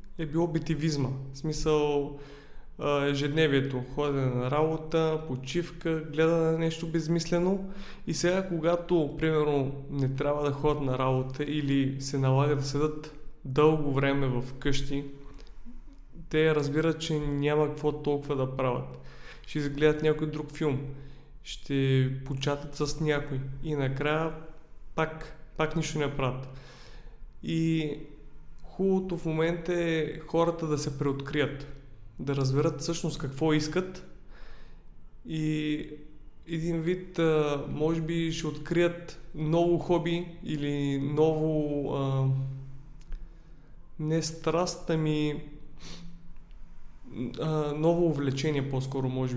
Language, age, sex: Bulgarian, 20-39, male